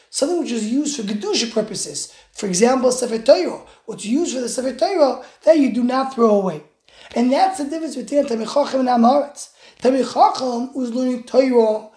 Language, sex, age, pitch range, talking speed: English, male, 20-39, 230-290 Hz, 175 wpm